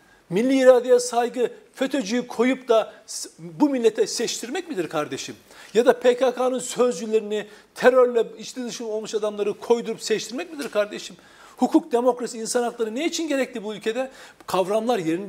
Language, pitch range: Turkish, 185-255 Hz